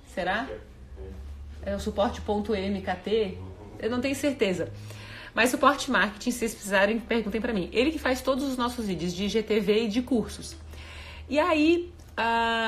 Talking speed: 150 wpm